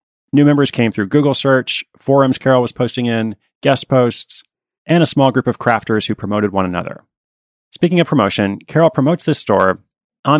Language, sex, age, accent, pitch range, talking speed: English, male, 30-49, American, 110-140 Hz, 180 wpm